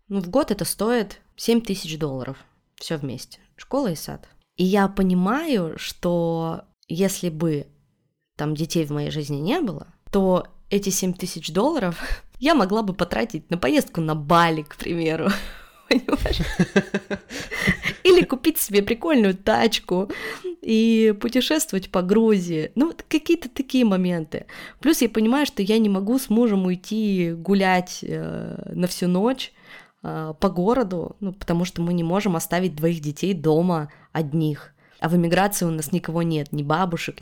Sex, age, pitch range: female, 20-39, 155-205 Hz